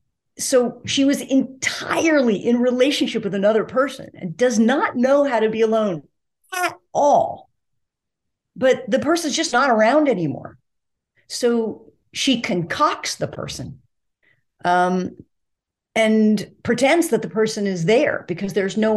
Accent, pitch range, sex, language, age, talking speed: American, 170-245 Hz, female, English, 40-59, 135 wpm